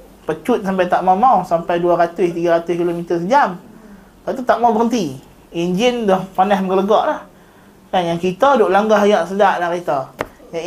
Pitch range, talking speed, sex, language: 185-235 Hz, 155 wpm, male, Malay